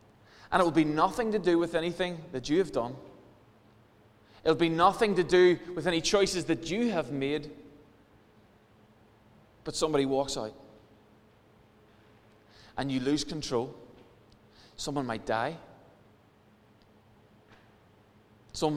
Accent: British